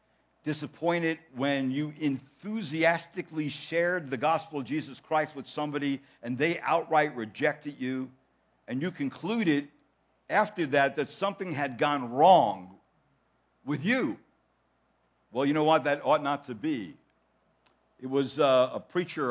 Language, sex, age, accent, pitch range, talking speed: English, male, 60-79, American, 140-180 Hz, 135 wpm